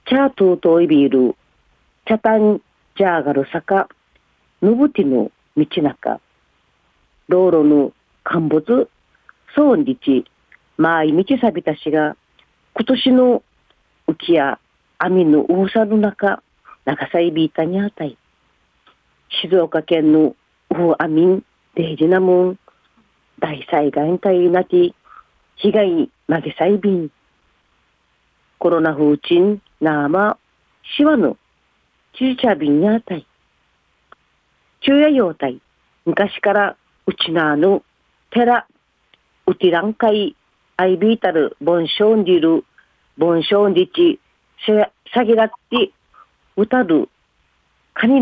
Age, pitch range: 40-59, 155-220 Hz